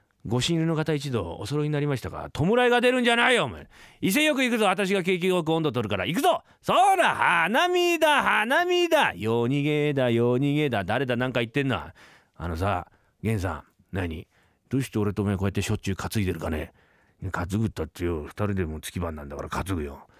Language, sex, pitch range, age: Japanese, male, 95-150 Hz, 40-59